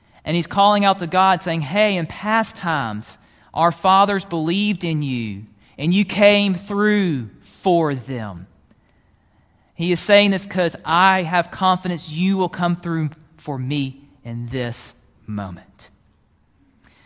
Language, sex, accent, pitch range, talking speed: English, male, American, 140-195 Hz, 140 wpm